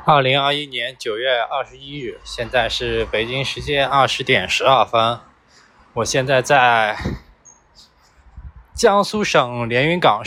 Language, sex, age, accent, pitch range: Chinese, male, 20-39, native, 105-145 Hz